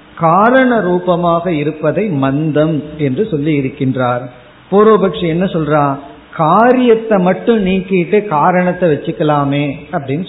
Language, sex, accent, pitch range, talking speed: Tamil, male, native, 150-190 Hz, 95 wpm